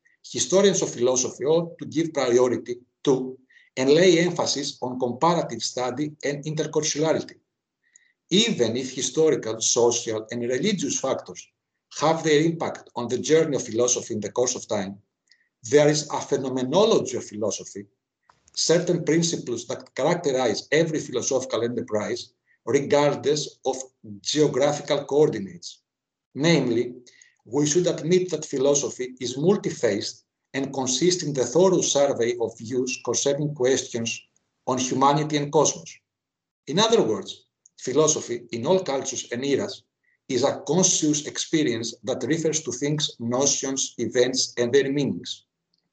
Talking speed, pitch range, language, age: 125 wpm, 125-160 Hz, English, 60-79